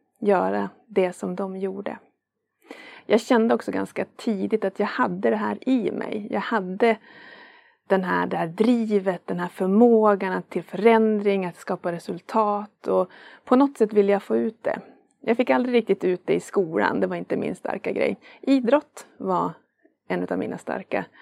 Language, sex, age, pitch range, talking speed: Swedish, female, 30-49, 190-235 Hz, 175 wpm